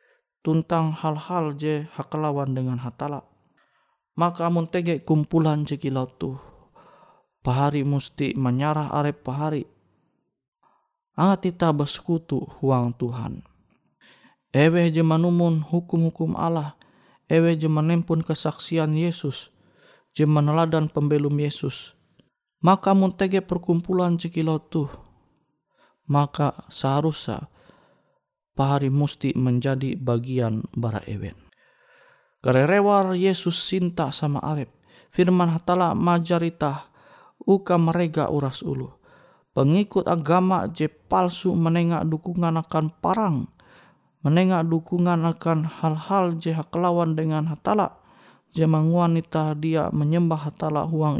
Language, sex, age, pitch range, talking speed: Indonesian, male, 20-39, 145-170 Hz, 95 wpm